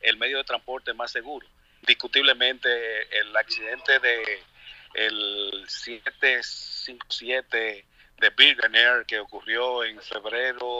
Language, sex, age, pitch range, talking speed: Spanish, male, 50-69, 115-140 Hz, 100 wpm